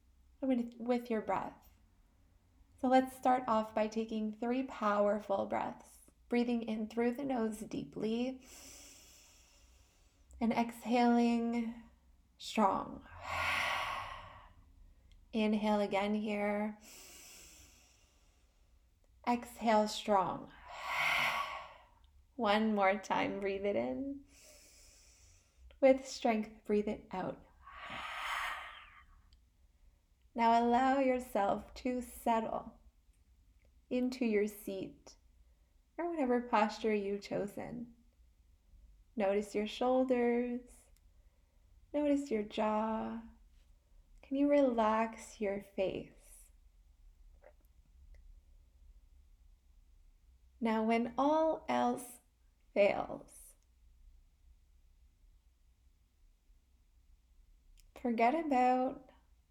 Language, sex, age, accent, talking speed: English, female, 10-29, American, 70 wpm